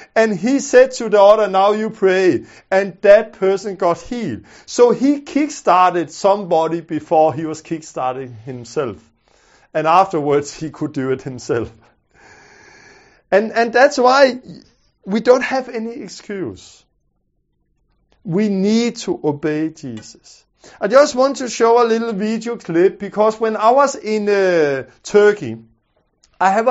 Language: English